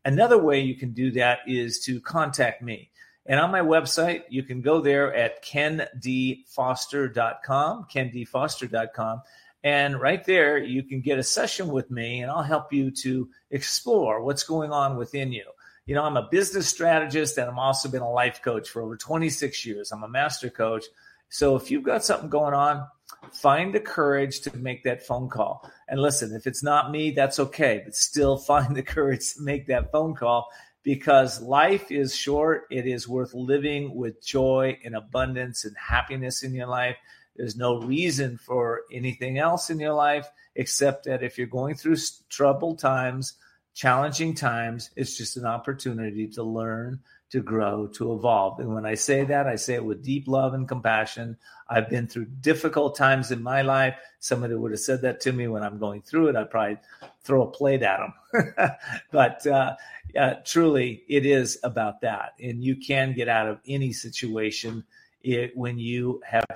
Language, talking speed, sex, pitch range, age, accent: English, 180 wpm, male, 120-140 Hz, 40-59, American